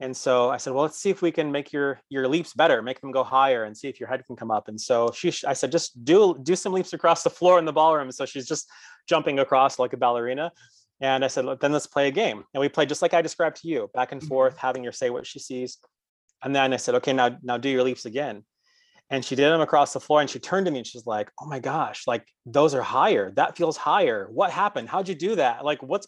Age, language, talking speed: 30-49, English, 280 wpm